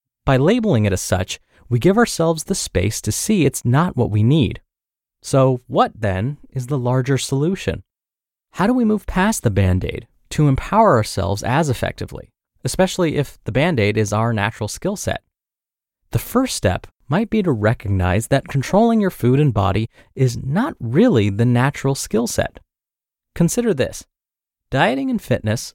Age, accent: 30-49, American